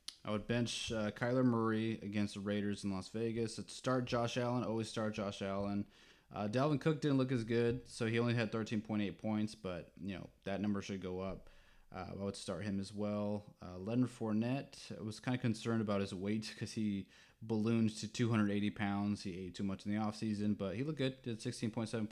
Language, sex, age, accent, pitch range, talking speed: English, male, 20-39, American, 95-110 Hz, 210 wpm